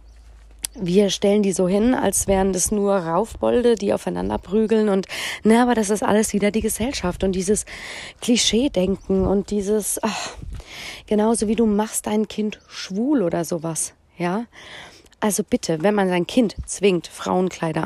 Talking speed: 155 wpm